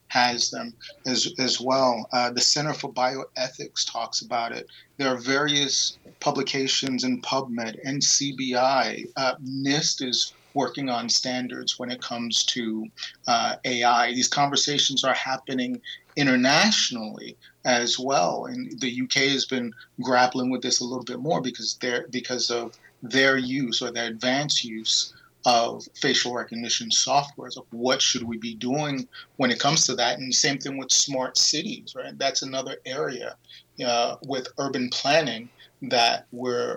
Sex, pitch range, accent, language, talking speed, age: male, 120-135 Hz, American, English, 150 wpm, 30-49